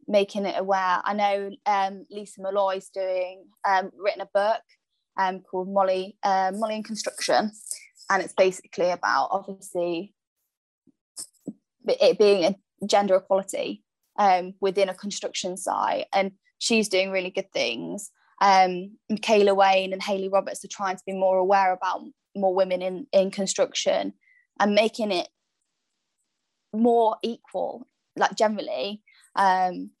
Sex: female